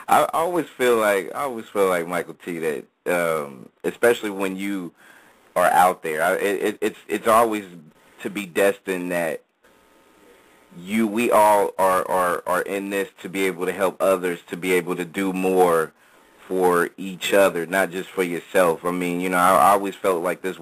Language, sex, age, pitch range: English, male, 30-49, 90-105 Hz